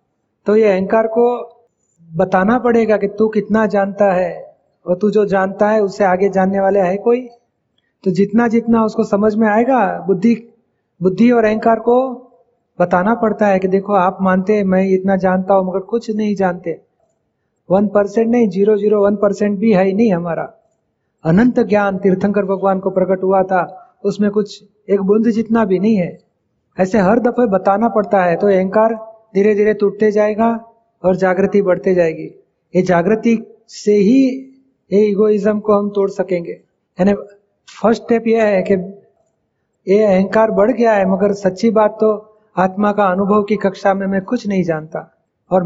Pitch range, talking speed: 190-220 Hz, 165 wpm